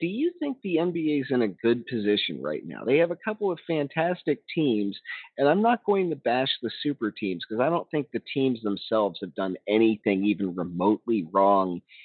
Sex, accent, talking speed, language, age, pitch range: male, American, 205 wpm, English, 40-59, 105-145 Hz